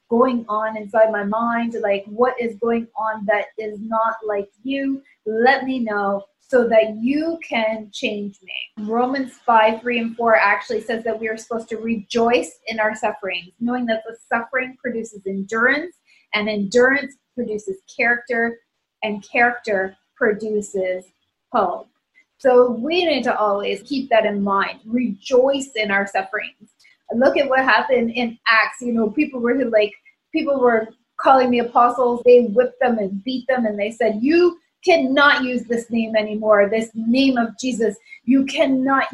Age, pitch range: 20-39, 220-255 Hz